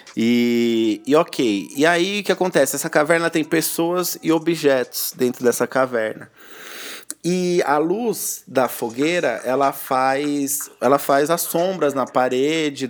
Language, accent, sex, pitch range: Portuguese, Brazilian, male, 135-165 Hz